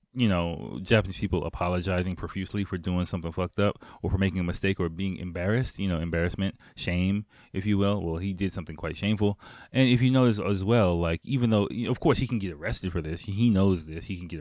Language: English